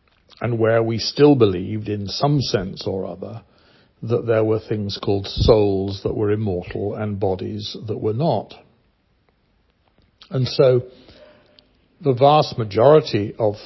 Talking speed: 130 wpm